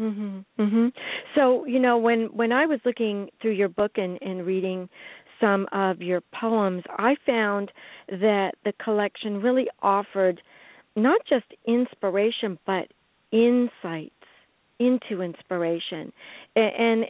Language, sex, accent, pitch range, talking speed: English, female, American, 195-235 Hz, 125 wpm